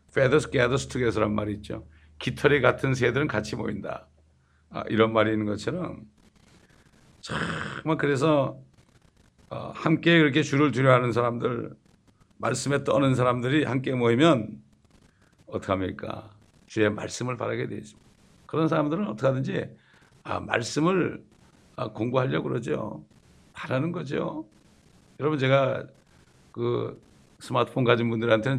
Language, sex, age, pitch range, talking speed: English, male, 60-79, 105-135 Hz, 105 wpm